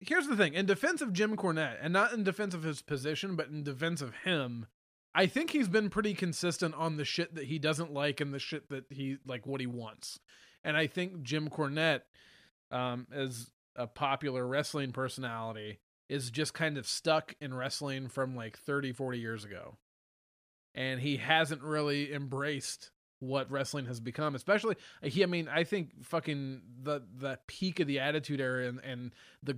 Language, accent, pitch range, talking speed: English, American, 125-165 Hz, 185 wpm